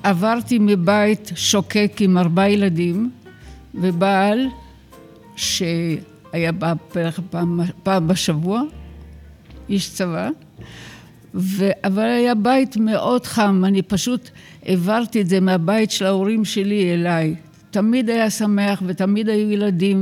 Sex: female